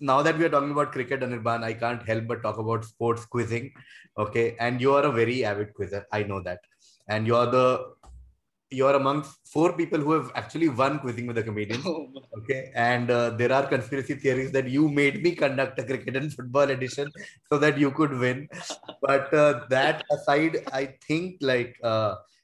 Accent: Indian